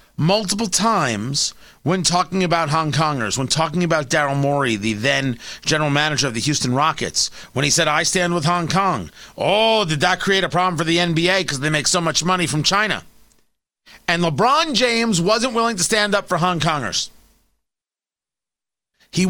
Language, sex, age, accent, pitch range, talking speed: English, male, 30-49, American, 150-225 Hz, 175 wpm